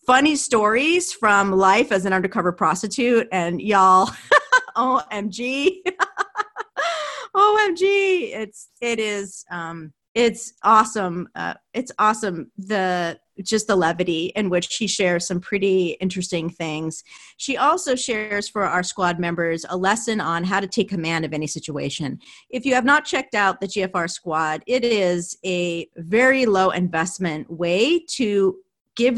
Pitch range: 175-235 Hz